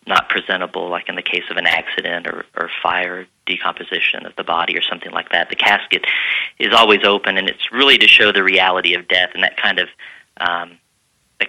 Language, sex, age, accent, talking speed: English, male, 40-59, American, 205 wpm